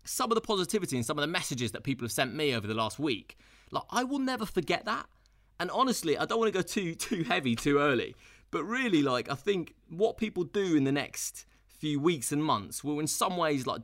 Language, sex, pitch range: English, male, 125-175 Hz